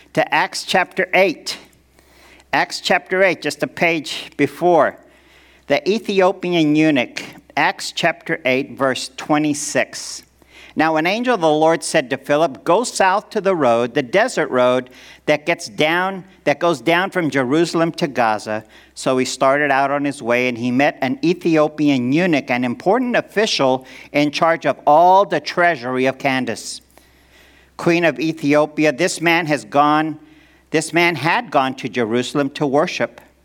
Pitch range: 130-170 Hz